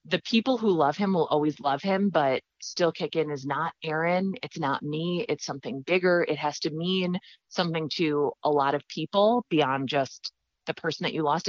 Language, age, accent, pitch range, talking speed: English, 30-49, American, 145-180 Hz, 205 wpm